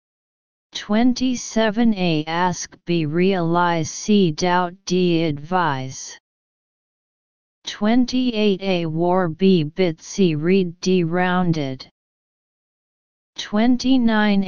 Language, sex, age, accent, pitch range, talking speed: English, female, 40-59, American, 165-200 Hz, 80 wpm